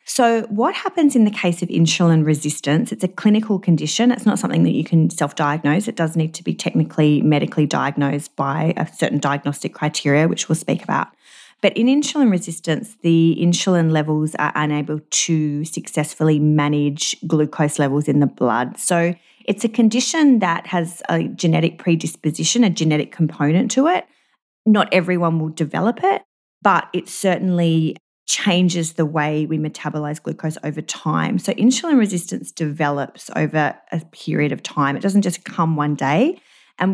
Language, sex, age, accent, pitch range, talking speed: English, female, 30-49, Australian, 155-185 Hz, 160 wpm